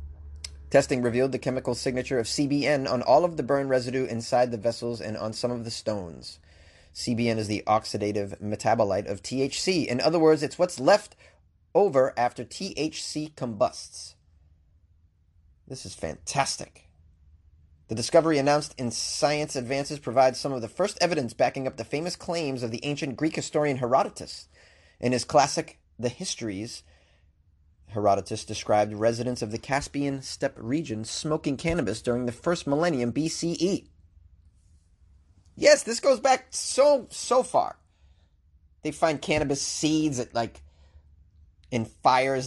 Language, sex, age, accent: English, male, 30-49, American